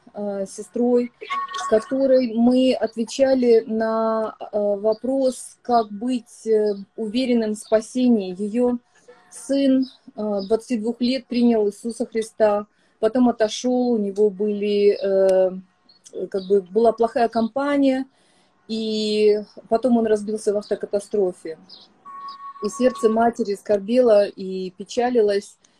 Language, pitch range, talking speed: Russian, 210-245 Hz, 95 wpm